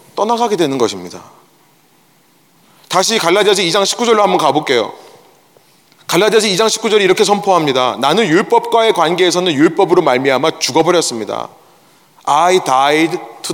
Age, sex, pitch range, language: 30-49, male, 200-255 Hz, Korean